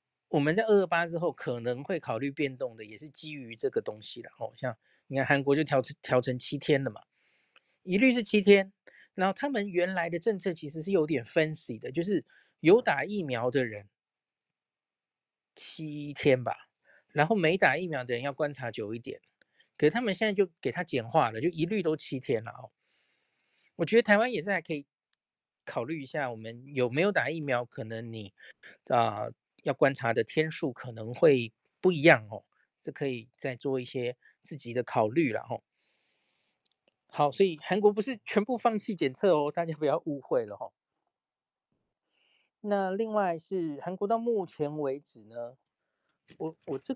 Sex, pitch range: male, 130-190 Hz